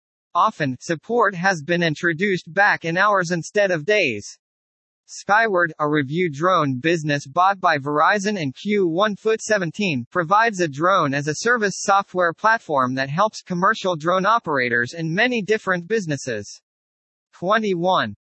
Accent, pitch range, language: American, 150-200 Hz, English